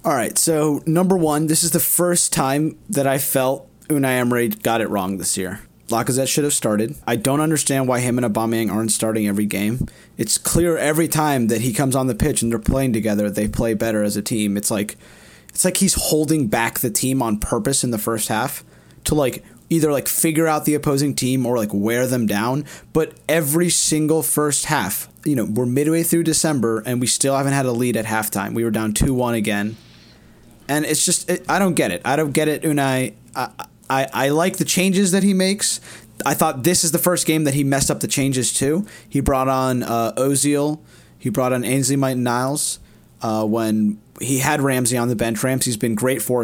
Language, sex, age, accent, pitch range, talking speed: English, male, 30-49, American, 115-150 Hz, 220 wpm